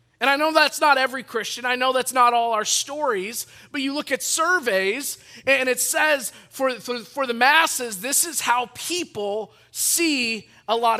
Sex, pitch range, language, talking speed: male, 200-285 Hz, English, 185 wpm